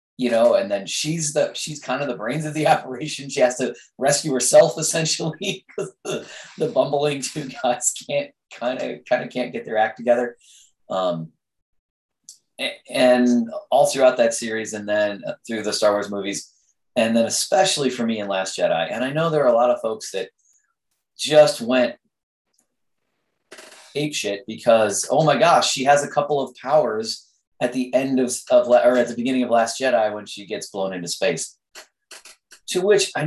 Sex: male